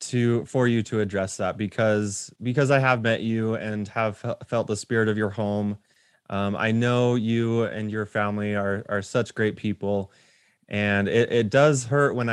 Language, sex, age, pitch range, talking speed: English, male, 20-39, 105-120 Hz, 185 wpm